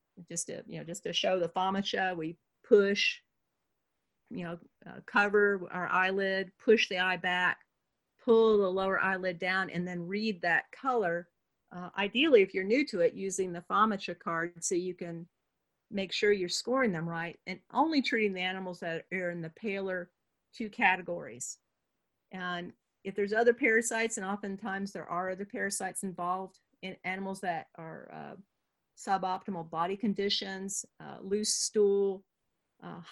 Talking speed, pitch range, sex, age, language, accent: 160 wpm, 180-215 Hz, female, 50-69, English, American